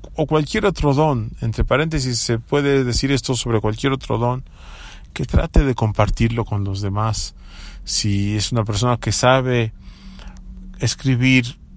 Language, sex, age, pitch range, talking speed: English, male, 40-59, 105-130 Hz, 145 wpm